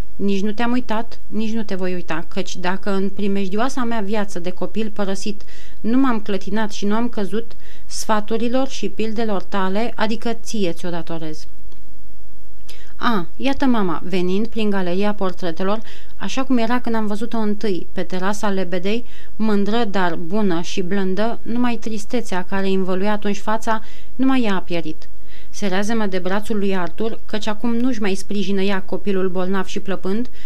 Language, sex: Romanian, female